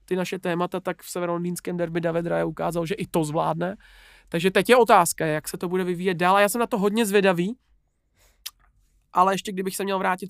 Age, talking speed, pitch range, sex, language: 20-39, 215 wpm, 175-205 Hz, male, Czech